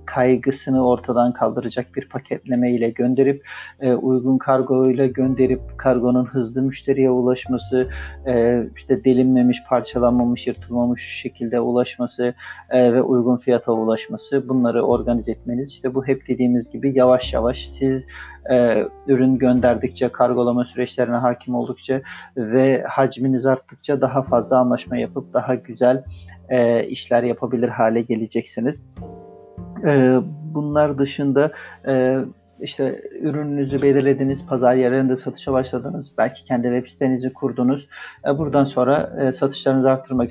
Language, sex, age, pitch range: Turkish, male, 40-59, 120-130 Hz